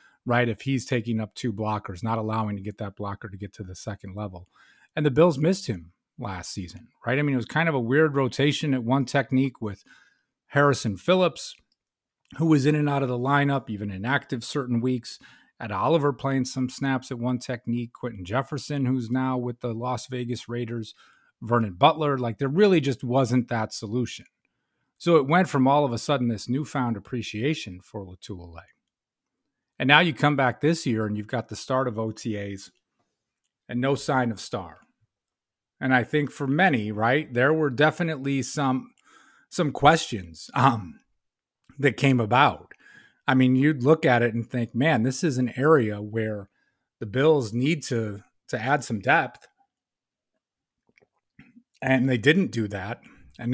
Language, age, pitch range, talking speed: English, 30-49, 115-145 Hz, 175 wpm